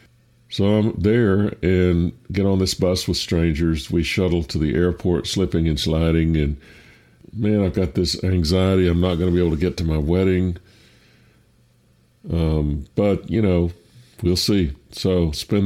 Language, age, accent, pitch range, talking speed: English, 50-69, American, 80-100 Hz, 165 wpm